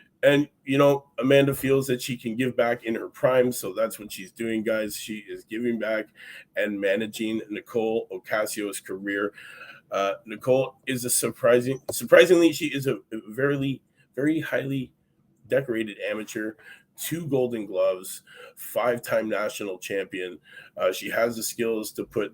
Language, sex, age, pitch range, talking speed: English, male, 30-49, 115-150 Hz, 150 wpm